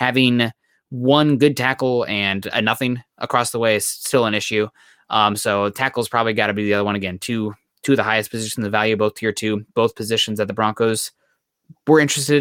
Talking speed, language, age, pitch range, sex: 210 wpm, English, 20-39, 105-130 Hz, male